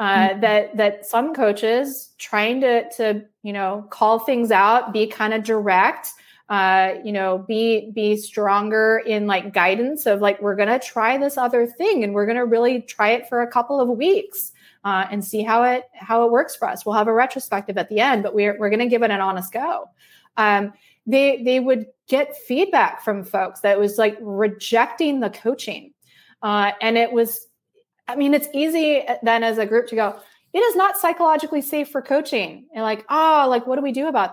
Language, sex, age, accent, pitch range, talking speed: English, female, 20-39, American, 210-270 Hz, 200 wpm